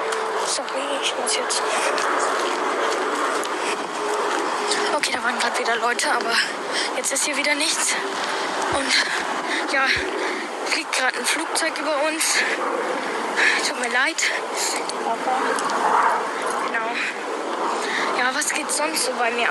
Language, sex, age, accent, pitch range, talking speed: German, female, 10-29, German, 280-435 Hz, 110 wpm